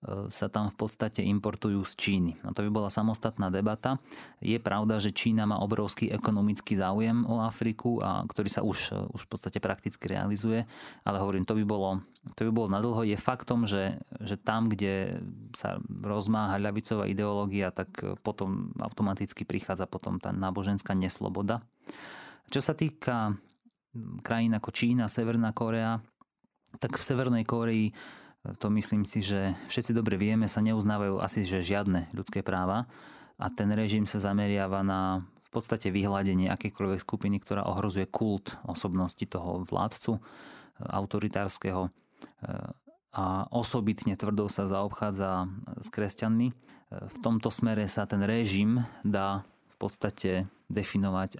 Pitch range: 100-115 Hz